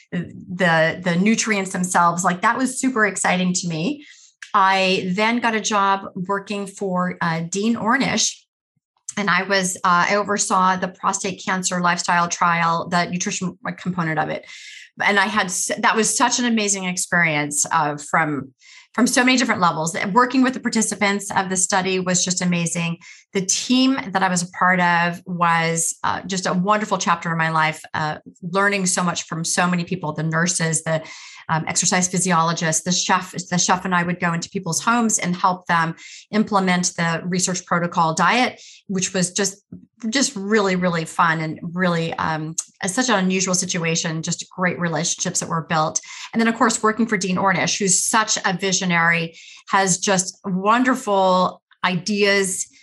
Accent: American